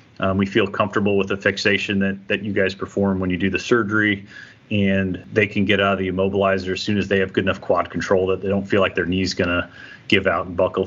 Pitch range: 95-105 Hz